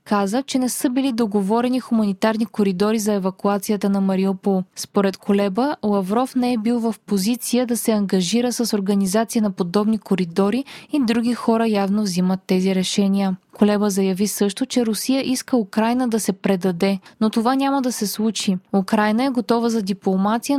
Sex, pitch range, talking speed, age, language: female, 200-245 Hz, 165 wpm, 20-39, Bulgarian